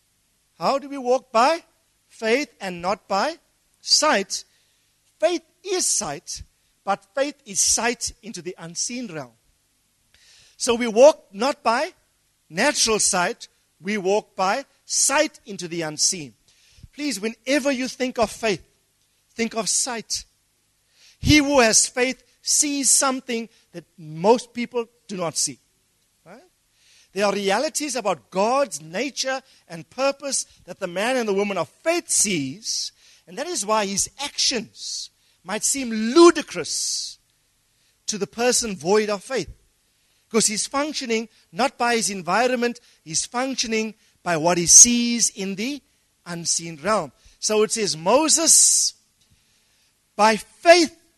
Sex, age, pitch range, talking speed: male, 50-69, 175-260 Hz, 130 wpm